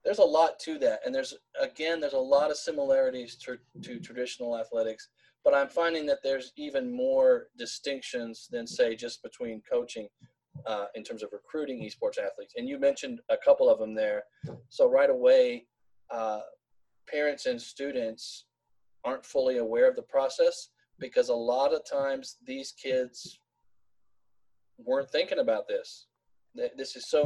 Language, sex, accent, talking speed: English, male, American, 160 wpm